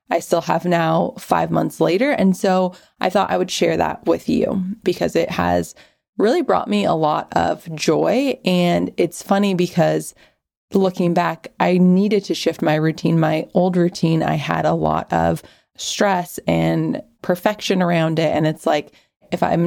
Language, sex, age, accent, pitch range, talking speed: English, female, 20-39, American, 155-190 Hz, 175 wpm